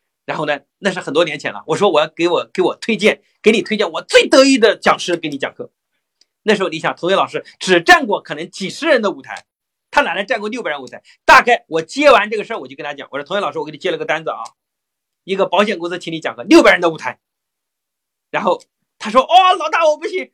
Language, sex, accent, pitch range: Chinese, male, native, 175-295 Hz